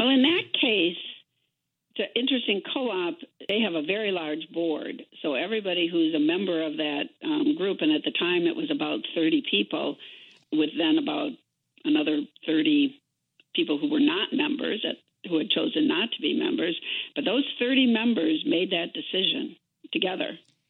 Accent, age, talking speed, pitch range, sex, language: American, 60-79, 160 wpm, 185-315 Hz, female, English